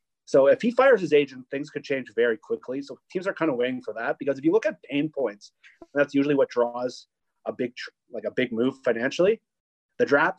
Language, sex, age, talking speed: English, male, 30-49, 225 wpm